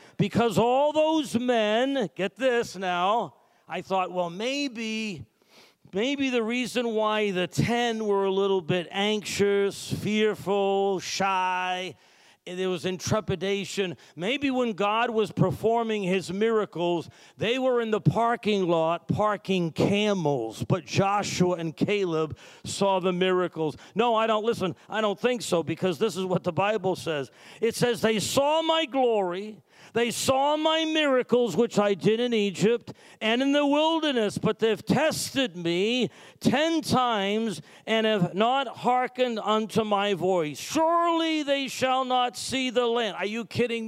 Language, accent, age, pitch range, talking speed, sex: English, American, 50-69, 190-245 Hz, 145 wpm, male